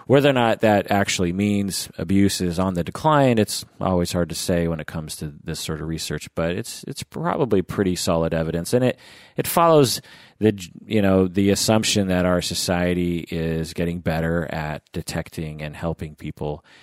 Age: 30-49